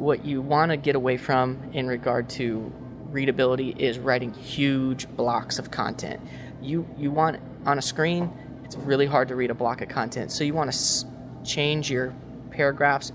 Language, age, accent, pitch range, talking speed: English, 20-39, American, 130-150 Hz, 180 wpm